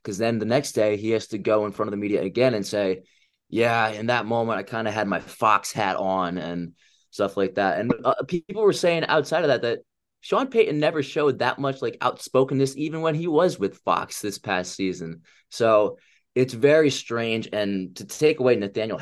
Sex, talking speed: male, 215 wpm